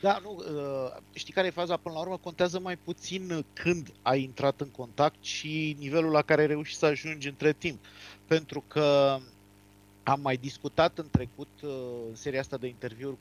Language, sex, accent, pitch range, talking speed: Romanian, male, native, 120-165 Hz, 175 wpm